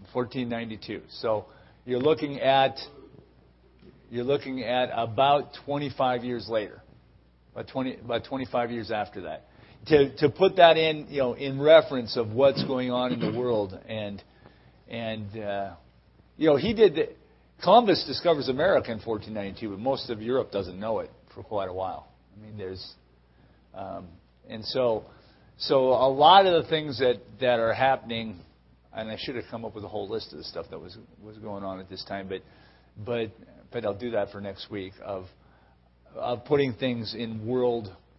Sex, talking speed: male, 175 wpm